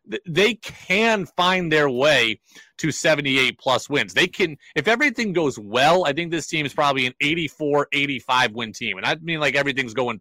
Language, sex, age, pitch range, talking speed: English, male, 30-49, 125-155 Hz, 180 wpm